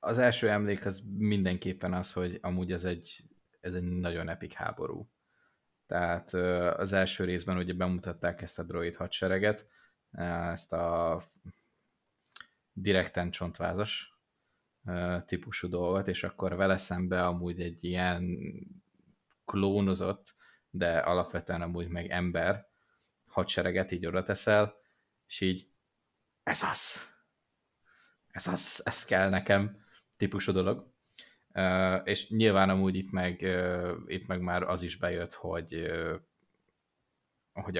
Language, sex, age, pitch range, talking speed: Hungarian, male, 20-39, 90-100 Hz, 115 wpm